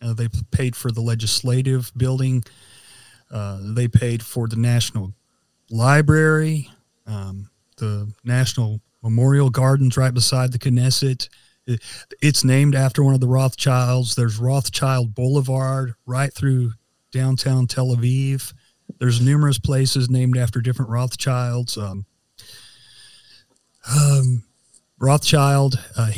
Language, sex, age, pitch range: English, male, 40-59, 115-130 Hz